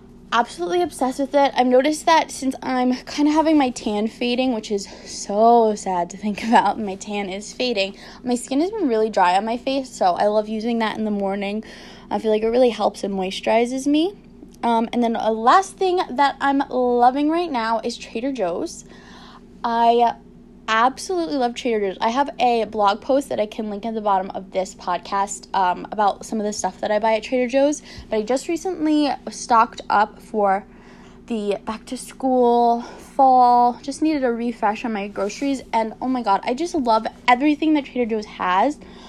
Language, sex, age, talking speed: English, female, 10-29, 200 wpm